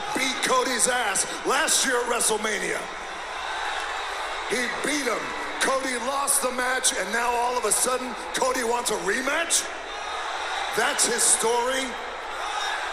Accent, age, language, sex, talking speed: American, 40-59, English, male, 125 wpm